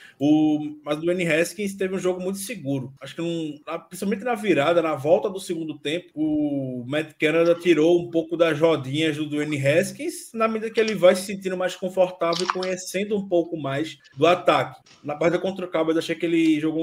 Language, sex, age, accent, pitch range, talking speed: Portuguese, male, 20-39, Brazilian, 145-180 Hz, 210 wpm